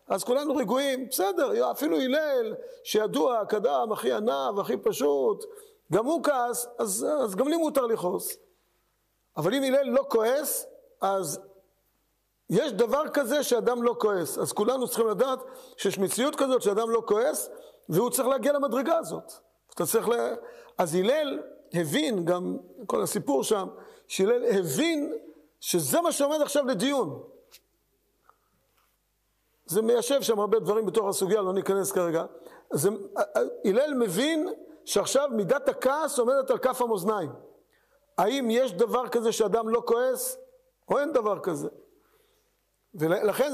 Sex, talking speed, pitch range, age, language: male, 130 wpm, 215-320 Hz, 50-69, Hebrew